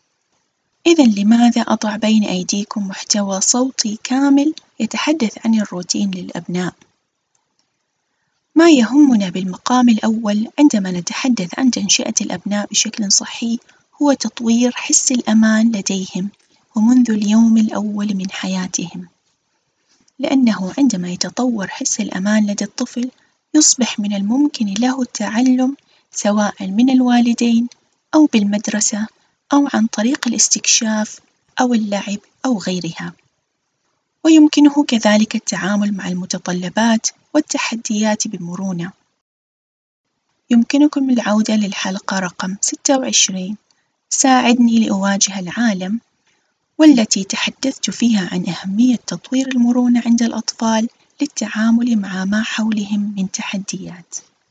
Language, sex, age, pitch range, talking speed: Arabic, female, 20-39, 205-250 Hz, 95 wpm